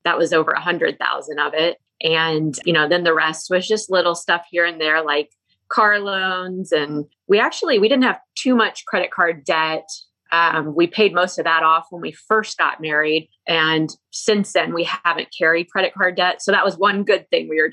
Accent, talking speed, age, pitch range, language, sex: American, 215 wpm, 20-39, 165-200 Hz, English, female